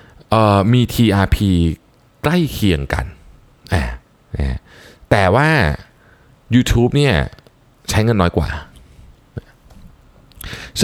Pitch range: 85-120 Hz